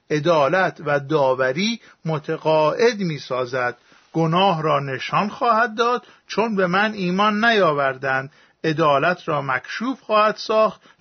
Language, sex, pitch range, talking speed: Persian, male, 155-210 Hz, 110 wpm